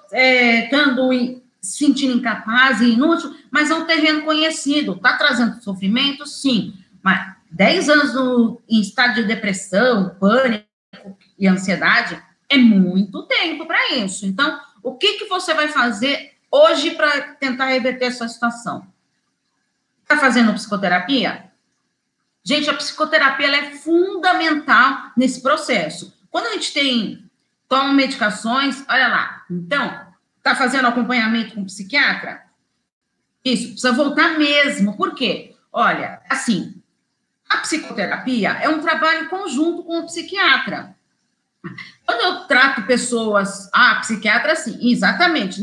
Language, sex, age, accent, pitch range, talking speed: Portuguese, female, 40-59, Brazilian, 225-300 Hz, 125 wpm